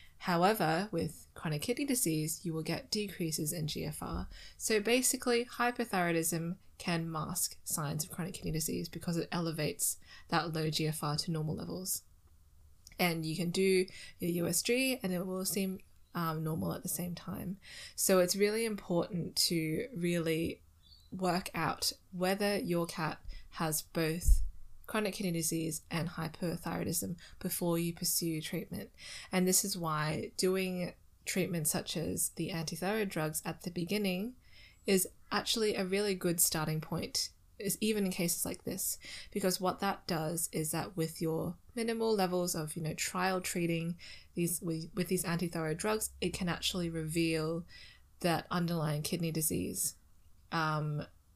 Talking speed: 145 wpm